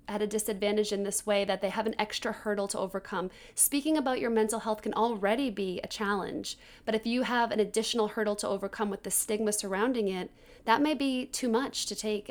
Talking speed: 220 wpm